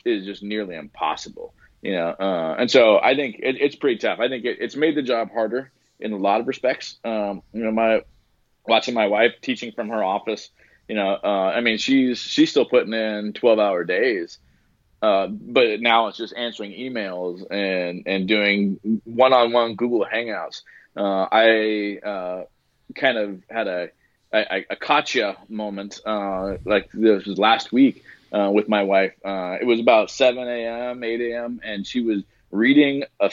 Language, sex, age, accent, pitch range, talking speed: English, male, 20-39, American, 100-120 Hz, 180 wpm